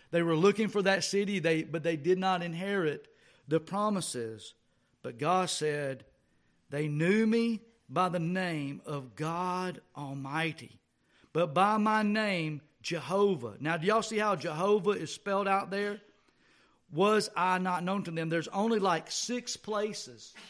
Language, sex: English, male